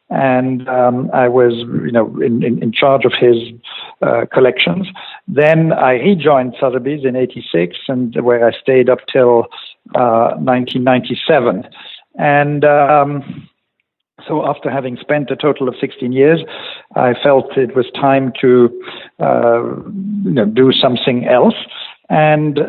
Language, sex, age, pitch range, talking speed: English, male, 60-79, 120-145 Hz, 145 wpm